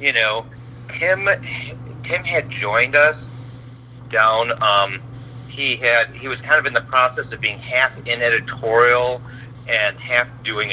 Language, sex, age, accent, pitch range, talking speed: English, male, 40-59, American, 120-125 Hz, 145 wpm